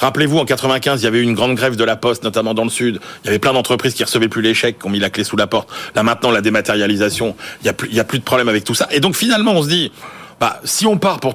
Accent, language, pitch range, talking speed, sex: French, French, 105-130 Hz, 310 wpm, male